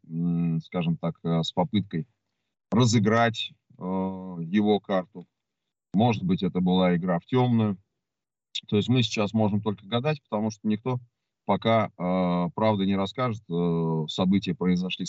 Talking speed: 130 wpm